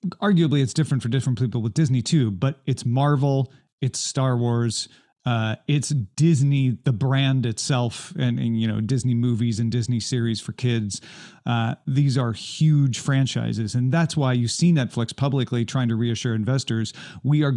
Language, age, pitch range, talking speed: English, 40-59, 115-145 Hz, 170 wpm